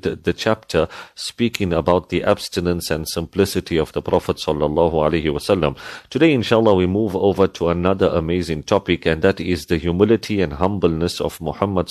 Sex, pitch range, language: male, 90-105 Hz, English